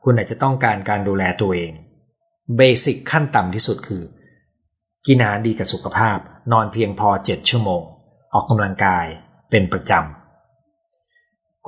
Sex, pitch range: male, 95-135 Hz